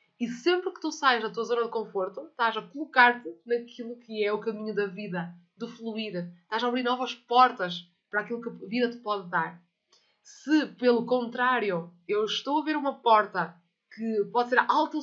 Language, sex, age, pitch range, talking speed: Portuguese, female, 20-39, 210-255 Hz, 195 wpm